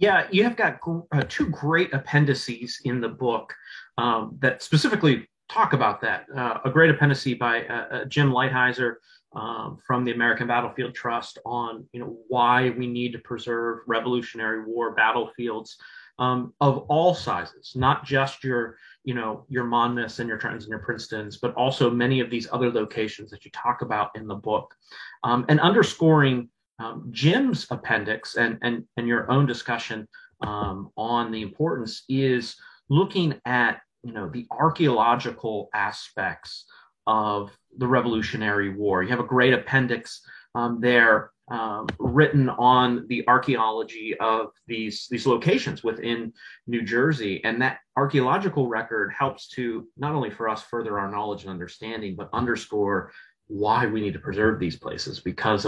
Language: English